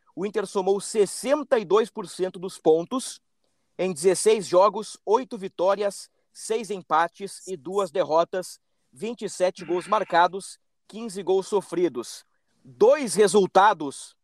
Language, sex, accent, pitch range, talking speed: Portuguese, male, Brazilian, 185-220 Hz, 100 wpm